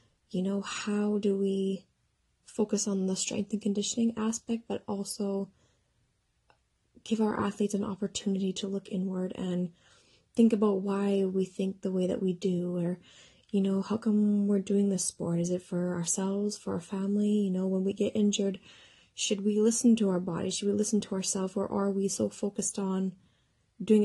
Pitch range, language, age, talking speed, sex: 190-210 Hz, English, 20-39, 180 wpm, female